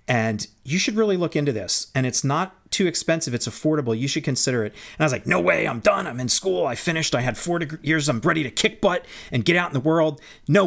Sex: male